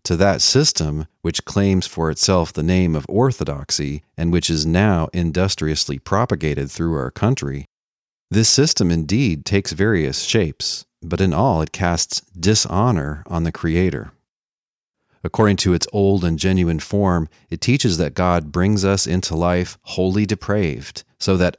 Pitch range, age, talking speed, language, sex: 80-100 Hz, 40-59, 150 wpm, English, male